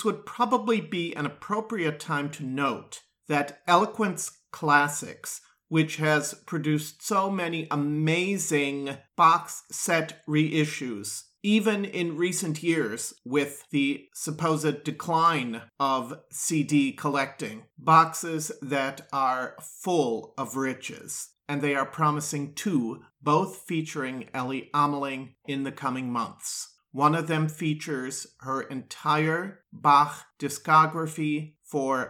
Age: 40-59